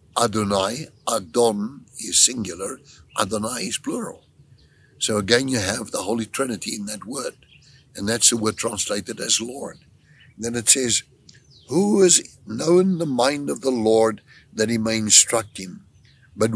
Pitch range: 110-140 Hz